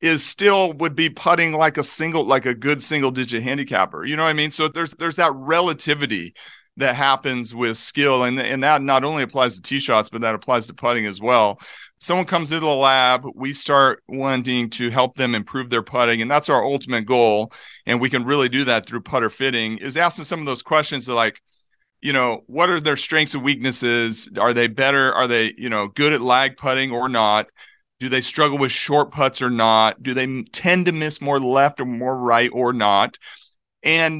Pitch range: 125-155 Hz